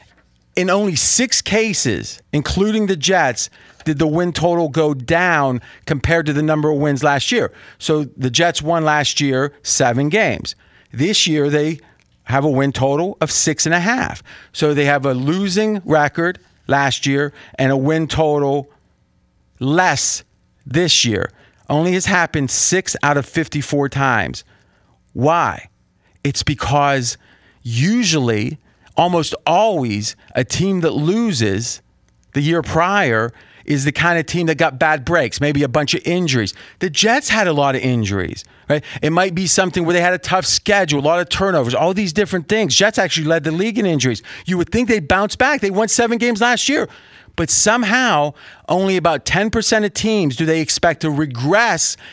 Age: 40-59